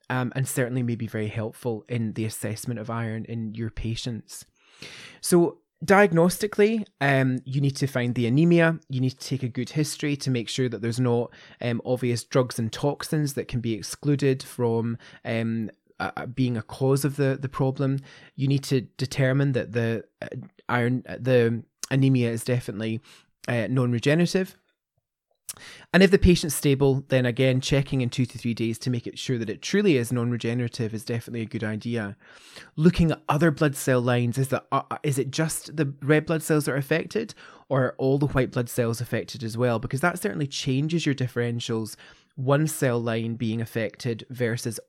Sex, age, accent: male, 20-39, British